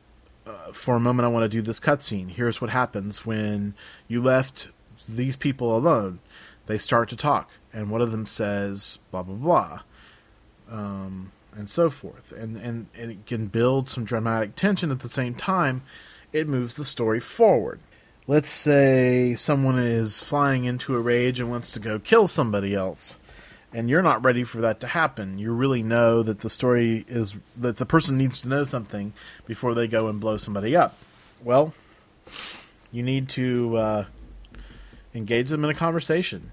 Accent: American